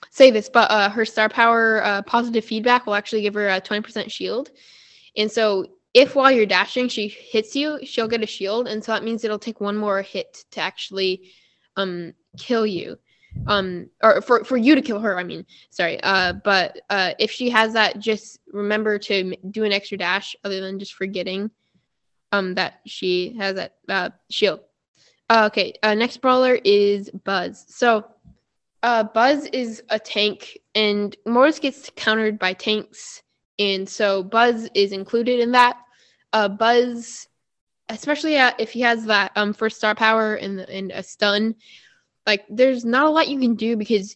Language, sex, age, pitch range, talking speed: English, female, 10-29, 205-245 Hz, 180 wpm